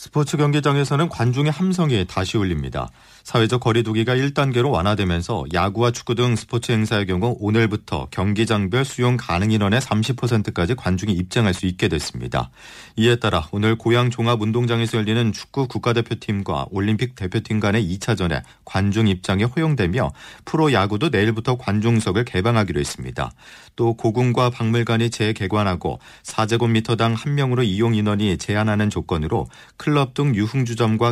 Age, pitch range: 40-59, 100-125 Hz